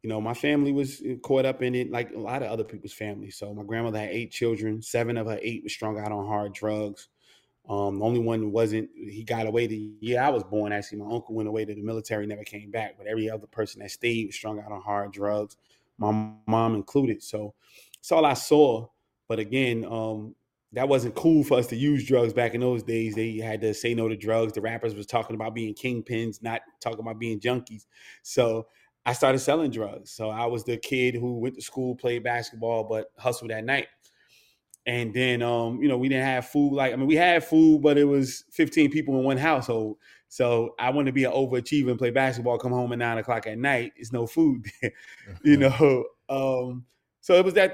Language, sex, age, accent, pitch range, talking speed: English, male, 20-39, American, 110-130 Hz, 225 wpm